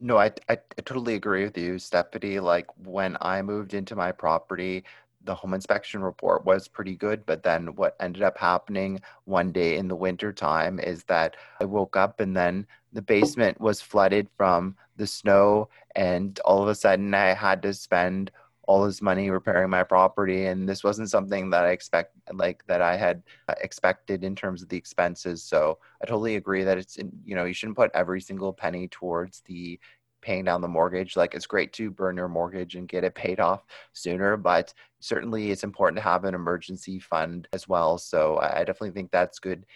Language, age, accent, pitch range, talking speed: English, 30-49, American, 90-100 Hz, 200 wpm